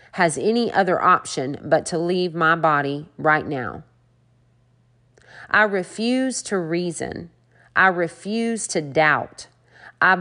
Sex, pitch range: female, 135-185 Hz